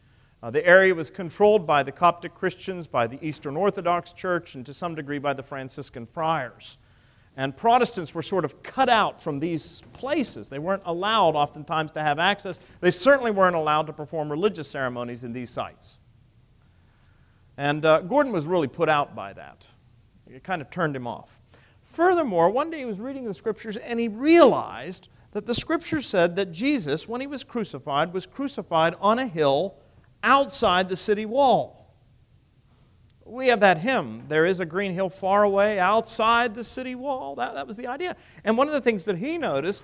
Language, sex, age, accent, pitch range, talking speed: English, male, 40-59, American, 145-245 Hz, 185 wpm